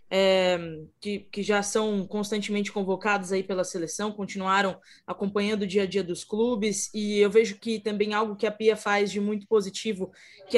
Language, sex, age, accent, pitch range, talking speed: Portuguese, female, 20-39, Brazilian, 200-250 Hz, 170 wpm